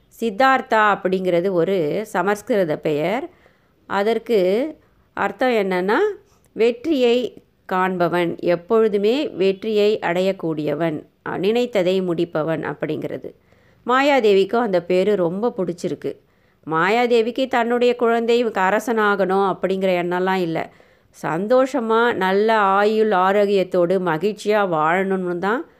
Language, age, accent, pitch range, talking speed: Tamil, 30-49, native, 170-215 Hz, 80 wpm